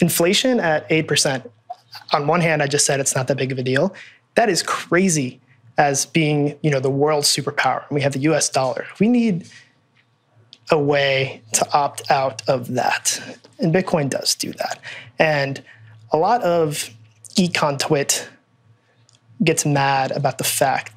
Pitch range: 130-160 Hz